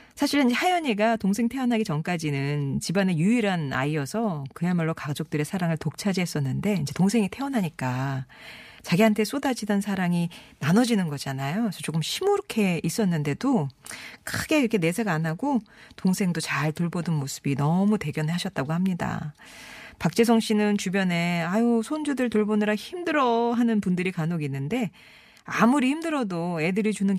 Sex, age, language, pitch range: female, 40-59, Korean, 155-225 Hz